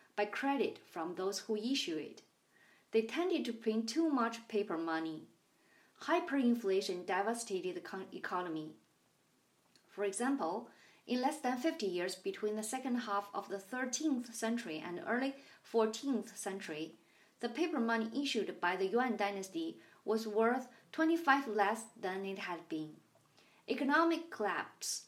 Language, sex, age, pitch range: English, female, 30-49, 190-245 Hz